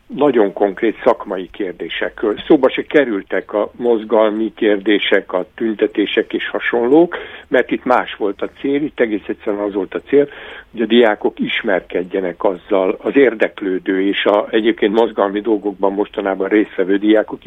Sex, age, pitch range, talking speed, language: male, 60-79, 100-120 Hz, 145 wpm, Hungarian